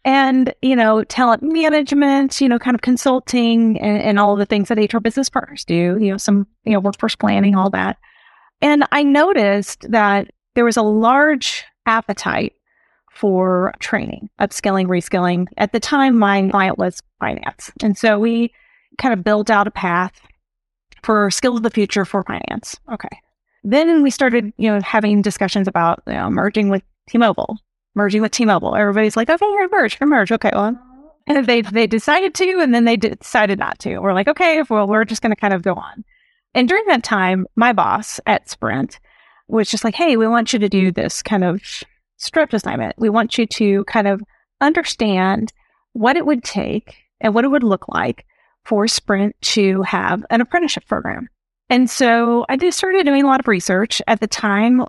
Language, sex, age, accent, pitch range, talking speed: English, female, 30-49, American, 205-255 Hz, 190 wpm